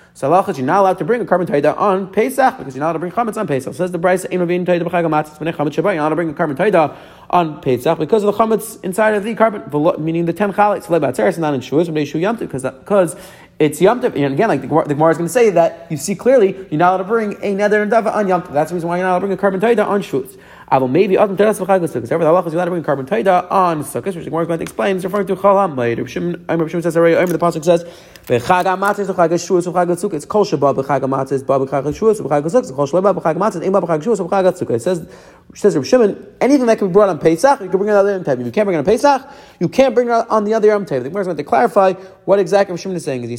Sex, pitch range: male, 165-210 Hz